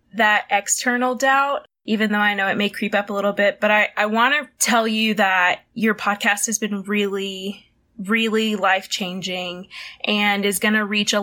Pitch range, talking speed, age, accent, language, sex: 200-235 Hz, 180 wpm, 20-39, American, English, female